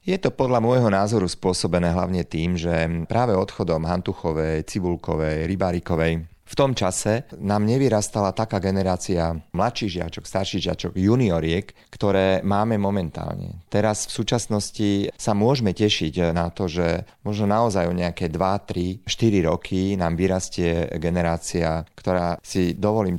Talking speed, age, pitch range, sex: 135 wpm, 30-49, 85-100 Hz, male